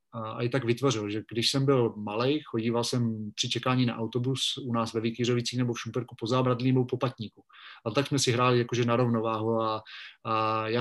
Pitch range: 115-125 Hz